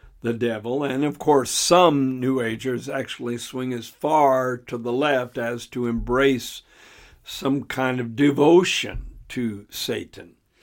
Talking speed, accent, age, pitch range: 135 wpm, American, 60-79, 120-145 Hz